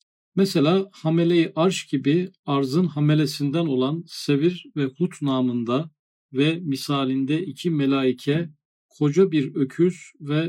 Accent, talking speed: native, 110 wpm